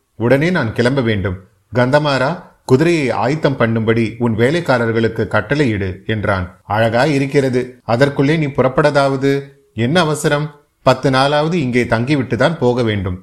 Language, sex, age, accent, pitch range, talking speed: Tamil, male, 30-49, native, 110-140 Hz, 115 wpm